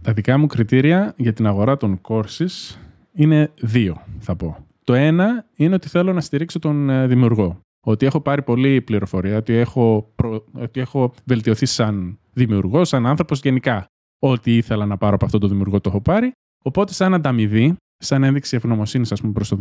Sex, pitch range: male, 110-155 Hz